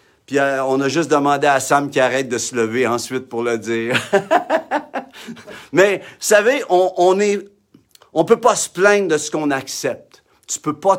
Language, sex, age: French, male, 50-69